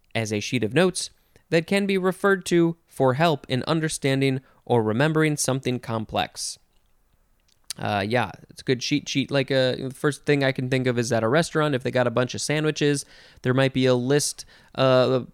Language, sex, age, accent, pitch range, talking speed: English, male, 20-39, American, 120-150 Hz, 200 wpm